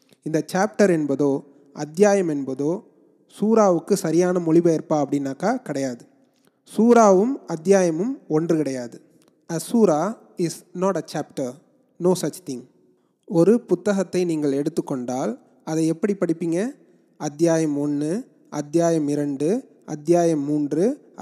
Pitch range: 155-205 Hz